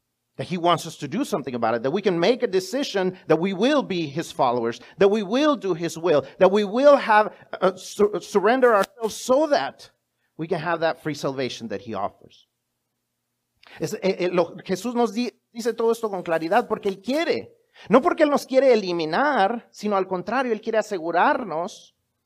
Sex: male